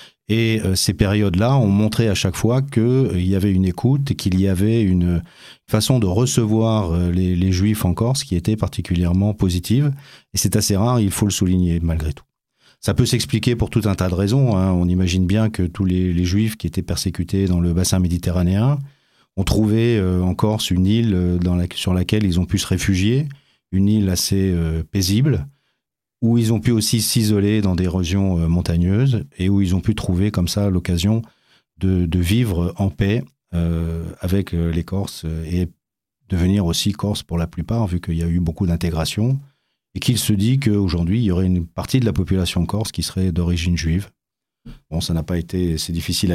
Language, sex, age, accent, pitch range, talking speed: French, male, 30-49, French, 90-110 Hz, 195 wpm